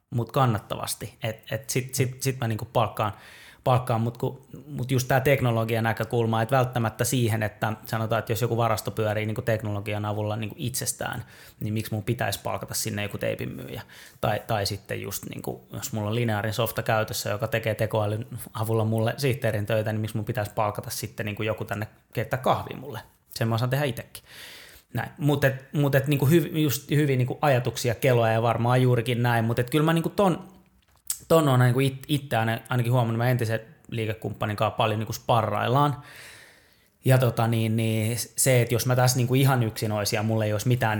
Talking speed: 180 wpm